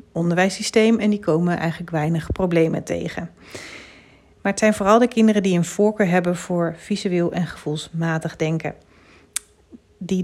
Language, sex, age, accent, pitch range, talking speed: Dutch, female, 40-59, Dutch, 165-210 Hz, 140 wpm